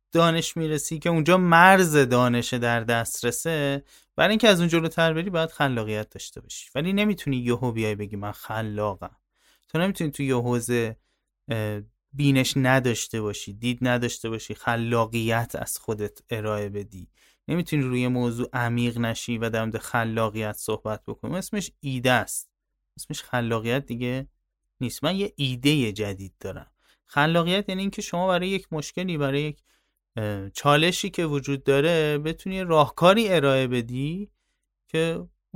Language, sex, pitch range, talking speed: Persian, male, 115-165 Hz, 135 wpm